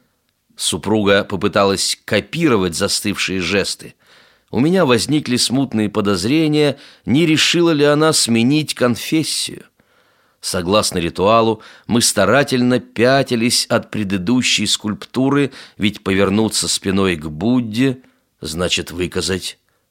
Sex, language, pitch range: male, Russian, 95-125 Hz